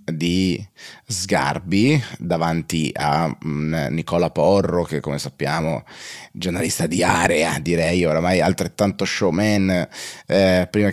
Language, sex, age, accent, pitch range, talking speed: Italian, male, 30-49, native, 85-110 Hz, 100 wpm